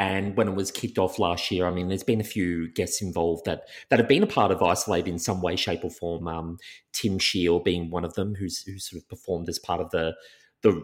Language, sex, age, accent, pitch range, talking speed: English, male, 30-49, Australian, 85-105 Hz, 260 wpm